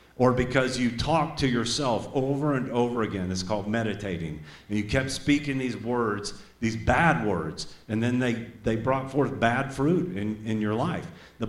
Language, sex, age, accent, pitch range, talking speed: English, male, 40-59, American, 110-135 Hz, 185 wpm